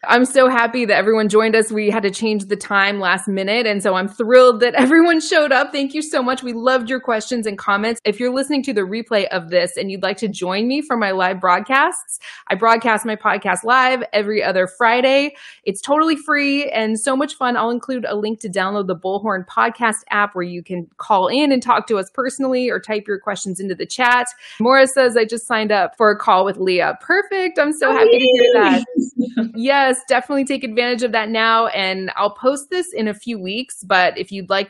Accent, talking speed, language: American, 225 wpm, English